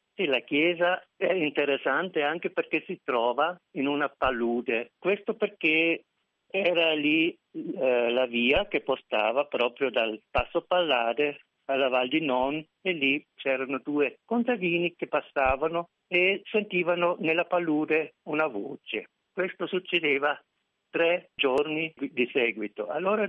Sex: male